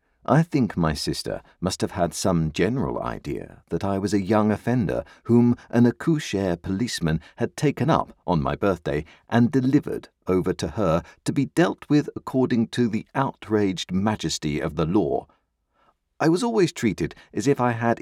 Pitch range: 85-120 Hz